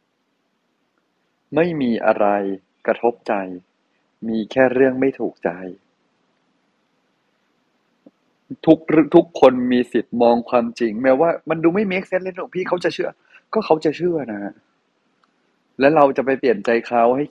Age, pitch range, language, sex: 30-49, 120-165 Hz, Thai, male